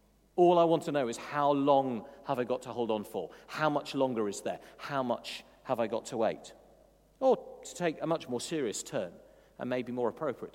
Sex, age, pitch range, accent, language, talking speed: male, 40-59, 140-190 Hz, British, English, 220 wpm